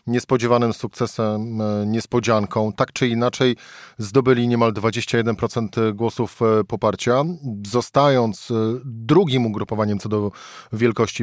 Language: Polish